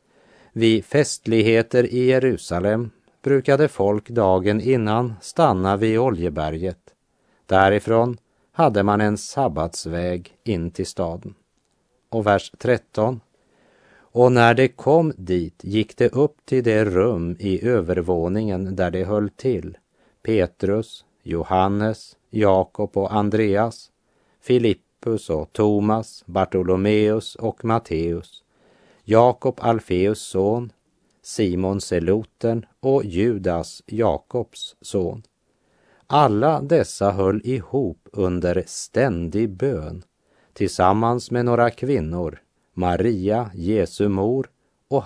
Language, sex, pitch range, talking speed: Swedish, male, 95-120 Hz, 100 wpm